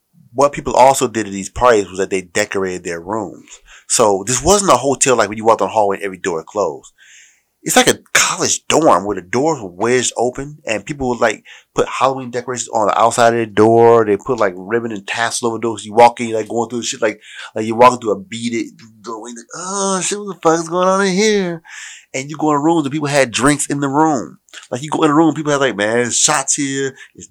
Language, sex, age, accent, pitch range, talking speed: English, male, 30-49, American, 110-165 Hz, 255 wpm